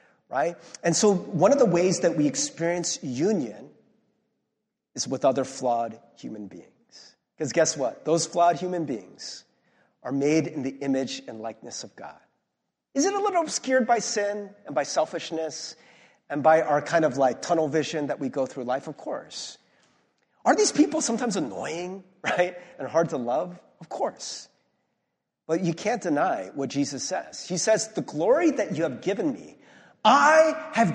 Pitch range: 155-245 Hz